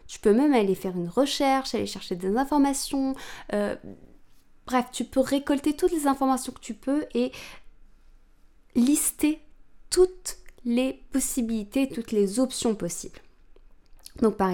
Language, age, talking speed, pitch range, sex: French, 20-39, 135 wpm, 200-270 Hz, female